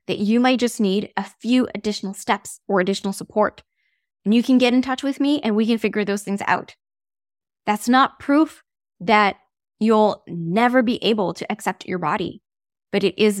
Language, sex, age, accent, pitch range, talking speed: English, female, 10-29, American, 195-245 Hz, 190 wpm